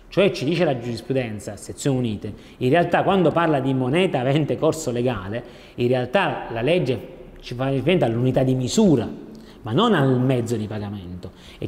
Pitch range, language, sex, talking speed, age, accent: 120-160 Hz, Italian, male, 170 wpm, 30-49, native